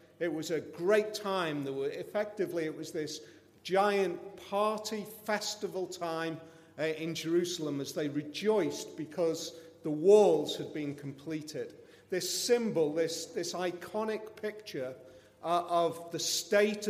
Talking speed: 130 wpm